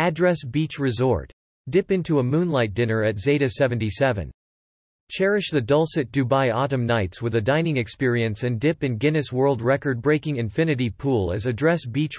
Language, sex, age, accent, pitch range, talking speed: English, male, 40-59, American, 115-150 Hz, 160 wpm